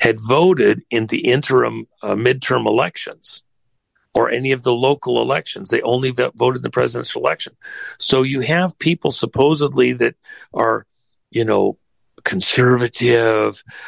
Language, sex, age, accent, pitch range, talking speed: English, male, 50-69, American, 115-140 Hz, 140 wpm